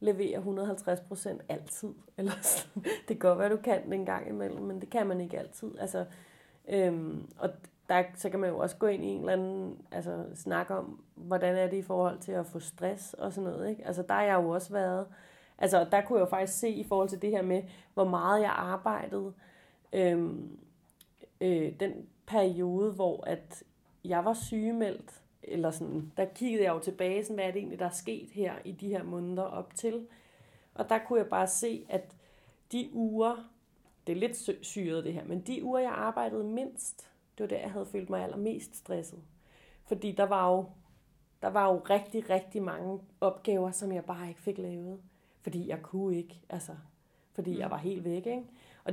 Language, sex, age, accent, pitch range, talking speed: Danish, female, 30-49, native, 180-205 Hz, 200 wpm